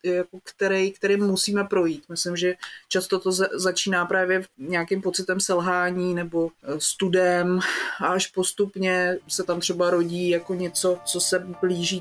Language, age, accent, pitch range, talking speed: Czech, 30-49, native, 170-195 Hz, 130 wpm